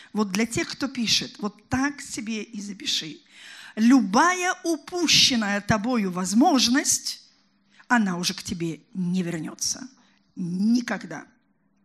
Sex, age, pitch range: female, 50-69, 200-255 Hz